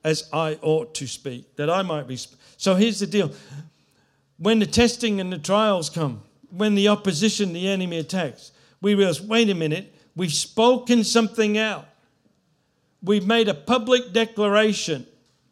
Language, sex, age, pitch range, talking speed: English, male, 60-79, 155-215 Hz, 155 wpm